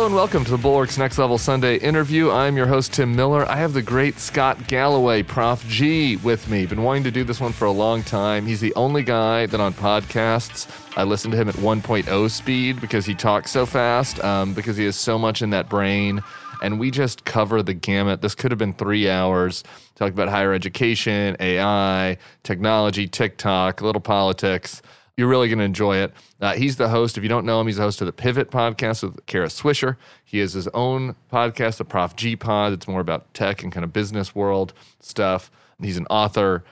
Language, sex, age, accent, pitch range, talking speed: English, male, 30-49, American, 95-120 Hz, 215 wpm